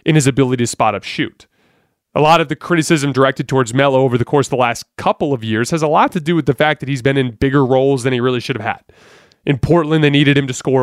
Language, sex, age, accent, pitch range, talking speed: English, male, 30-49, American, 125-160 Hz, 285 wpm